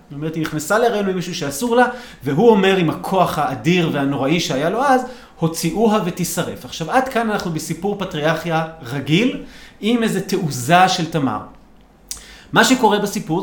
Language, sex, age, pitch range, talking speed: Hebrew, male, 30-49, 160-225 Hz, 155 wpm